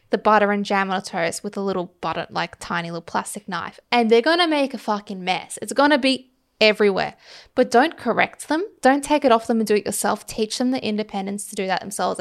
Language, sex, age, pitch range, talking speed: English, female, 10-29, 200-240 Hz, 245 wpm